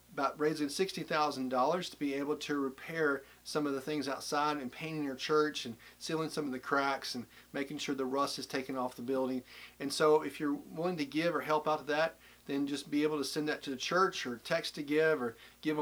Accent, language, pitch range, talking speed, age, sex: American, English, 130-150 Hz, 235 wpm, 40-59, male